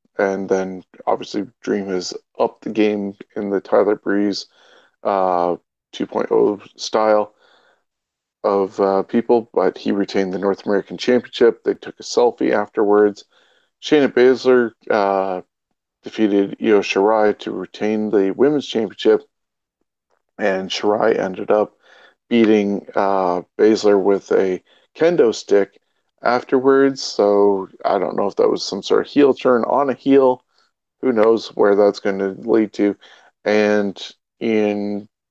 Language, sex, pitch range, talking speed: English, male, 100-115 Hz, 135 wpm